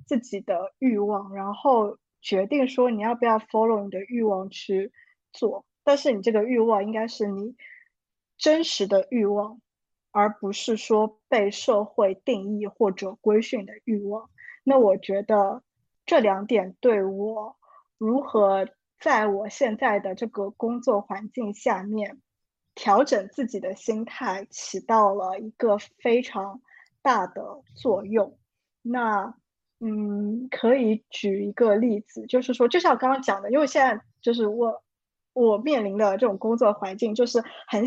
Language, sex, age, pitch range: Chinese, female, 20-39, 200-250 Hz